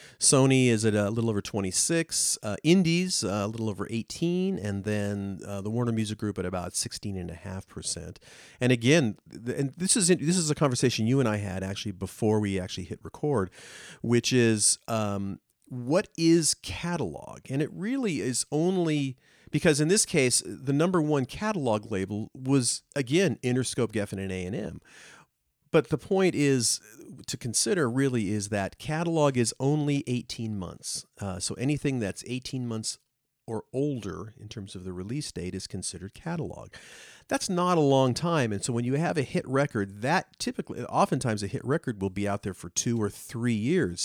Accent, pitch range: American, 100-140 Hz